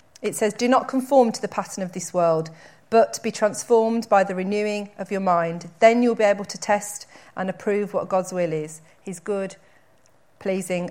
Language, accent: English, British